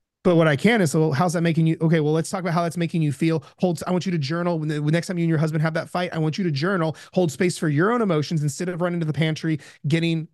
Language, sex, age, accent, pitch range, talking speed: English, male, 30-49, American, 145-175 Hz, 315 wpm